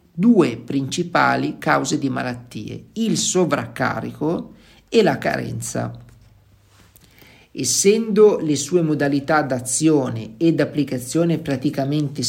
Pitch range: 125-175 Hz